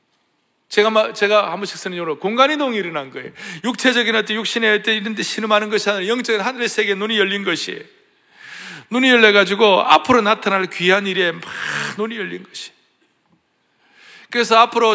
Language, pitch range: Korean, 200-255 Hz